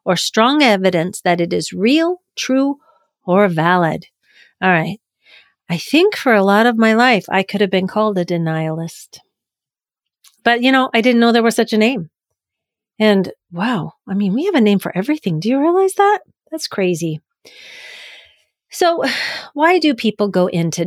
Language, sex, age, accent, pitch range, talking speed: English, female, 40-59, American, 185-255 Hz, 175 wpm